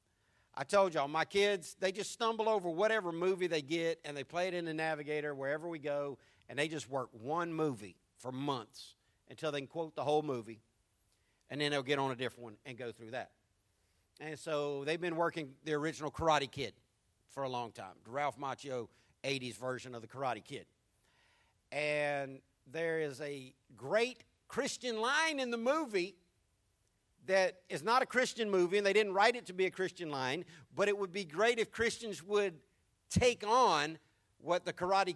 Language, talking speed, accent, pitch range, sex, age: English, 190 wpm, American, 130-185 Hz, male, 50-69